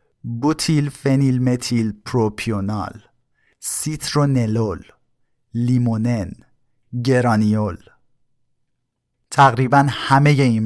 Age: 50-69